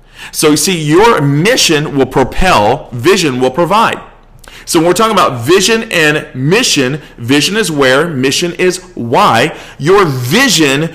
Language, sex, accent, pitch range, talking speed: English, male, American, 130-180 Hz, 140 wpm